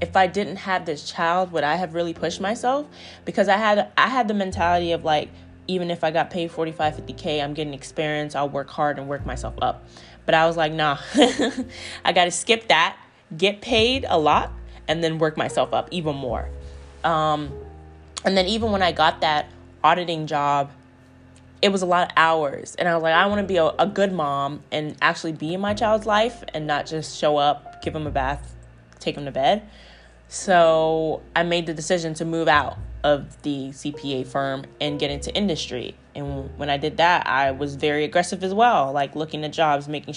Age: 20-39